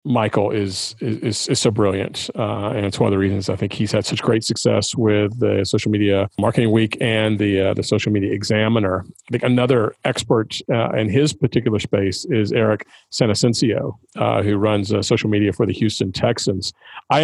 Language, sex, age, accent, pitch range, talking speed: English, male, 40-59, American, 110-135 Hz, 195 wpm